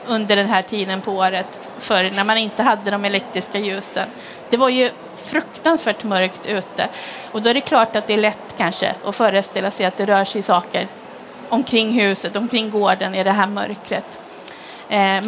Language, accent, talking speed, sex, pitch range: Swedish, native, 185 wpm, female, 205-250 Hz